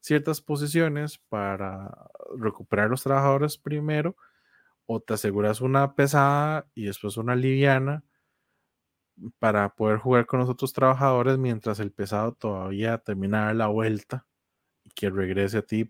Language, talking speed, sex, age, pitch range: Spanish, 135 wpm, male, 20-39, 105-140 Hz